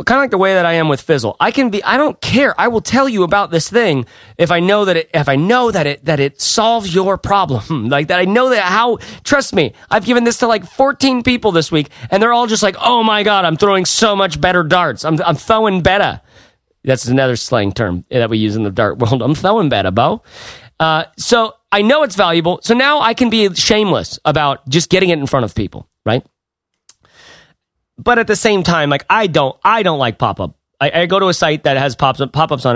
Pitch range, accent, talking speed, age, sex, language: 140-200 Hz, American, 245 wpm, 30-49, male, English